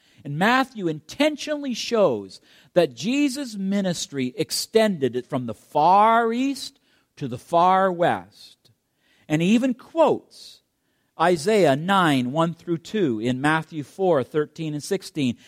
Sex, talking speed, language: male, 125 wpm, English